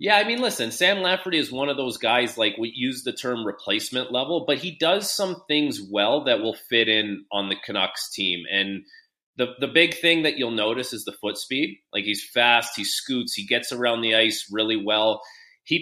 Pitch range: 115-155 Hz